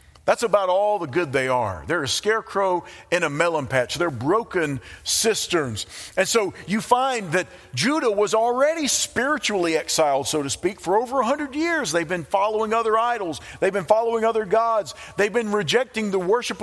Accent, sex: American, male